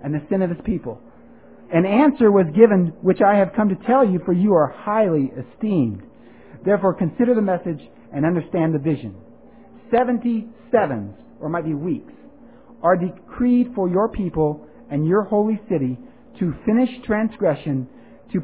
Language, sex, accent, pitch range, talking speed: English, male, American, 160-220 Hz, 165 wpm